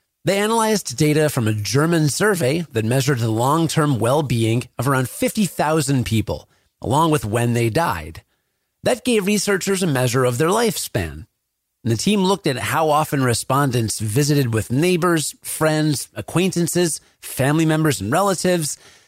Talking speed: 140 wpm